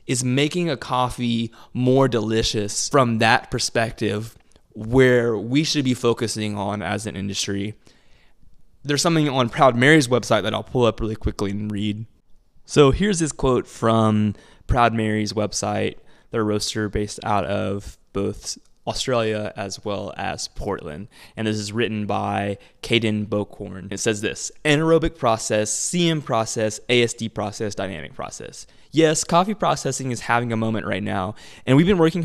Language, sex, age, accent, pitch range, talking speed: English, male, 20-39, American, 105-130 Hz, 155 wpm